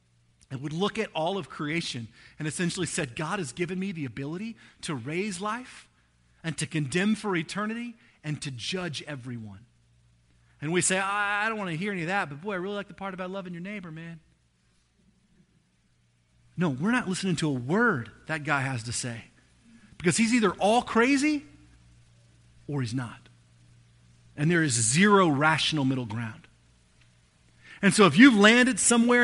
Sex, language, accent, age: male, English, American, 40-59